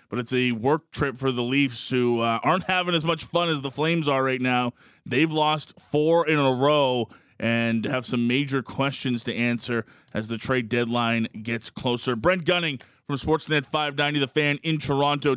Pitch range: 125-175 Hz